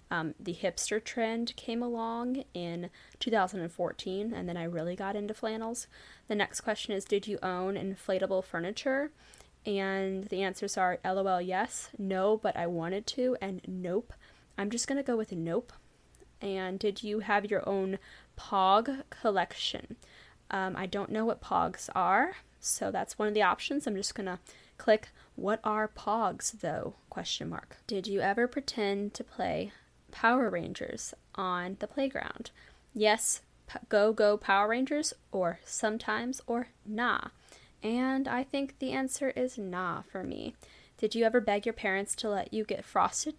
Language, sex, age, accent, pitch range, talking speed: English, female, 10-29, American, 190-225 Hz, 160 wpm